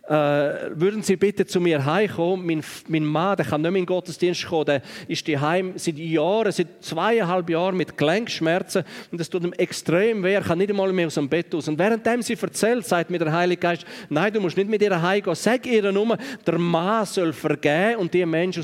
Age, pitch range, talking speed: 40-59, 150-195 Hz, 220 wpm